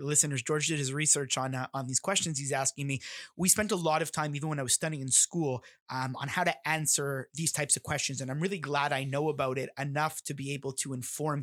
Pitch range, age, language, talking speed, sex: 135-155 Hz, 20-39, English, 255 wpm, male